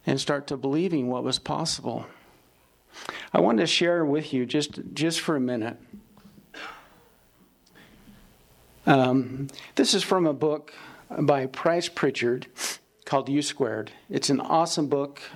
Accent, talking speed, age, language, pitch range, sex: American, 135 wpm, 50-69, English, 135-160 Hz, male